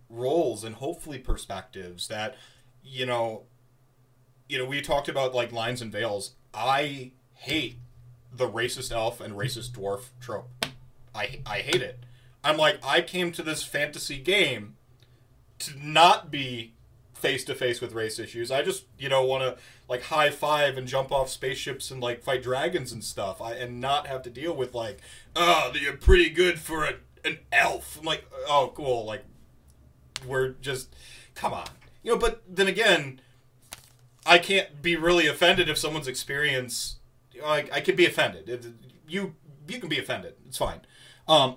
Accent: American